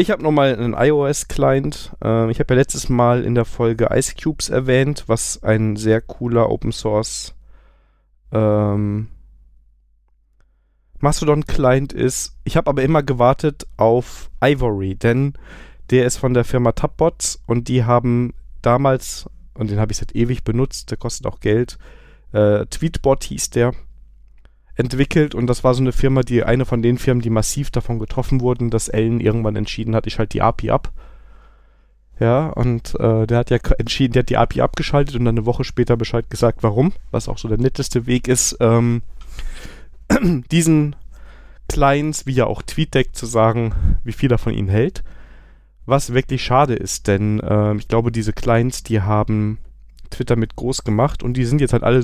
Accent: German